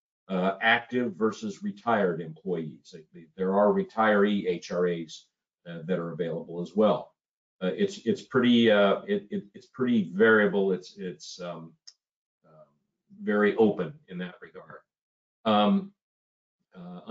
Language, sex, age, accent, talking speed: English, male, 50-69, American, 125 wpm